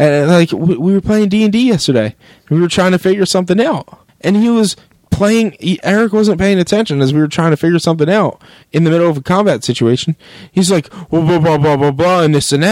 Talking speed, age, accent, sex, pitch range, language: 235 wpm, 20-39, American, male, 130-185 Hz, English